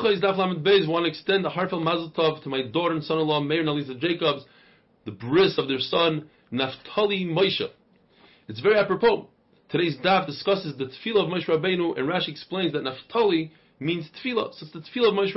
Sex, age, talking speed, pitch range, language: male, 30-49, 185 wpm, 155-200 Hz, English